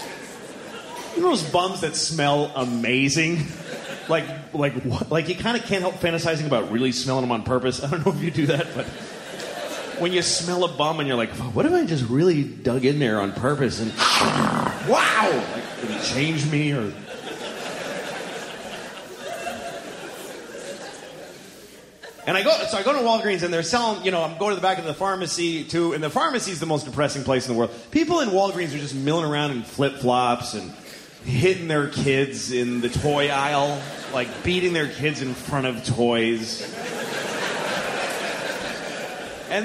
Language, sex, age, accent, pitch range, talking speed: English, male, 30-49, American, 135-225 Hz, 175 wpm